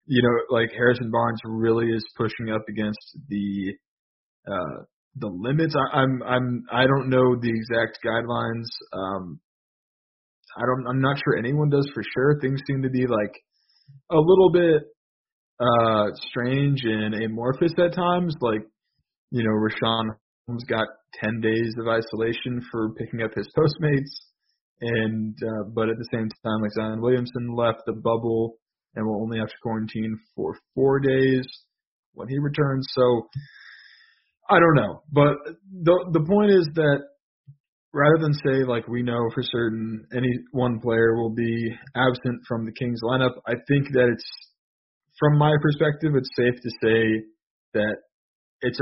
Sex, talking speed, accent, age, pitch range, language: male, 160 wpm, American, 20-39, 110-135 Hz, English